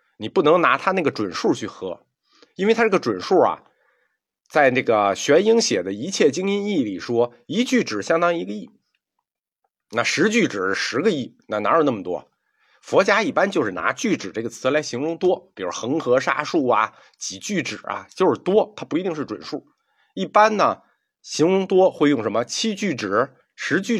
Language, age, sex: Chinese, 50-69, male